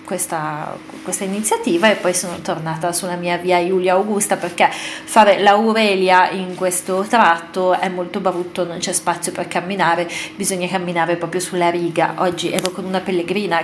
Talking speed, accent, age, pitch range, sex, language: 165 wpm, native, 30-49, 175-200 Hz, female, Italian